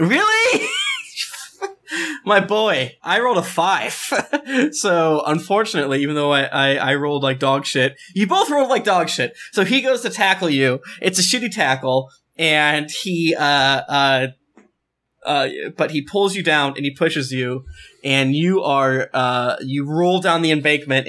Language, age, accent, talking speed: English, 20-39, American, 160 wpm